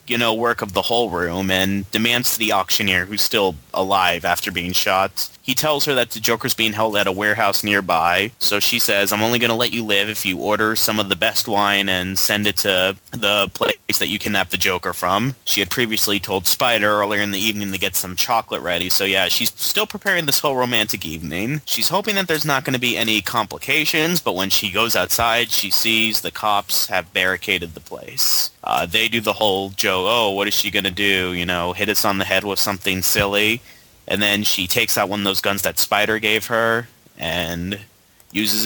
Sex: male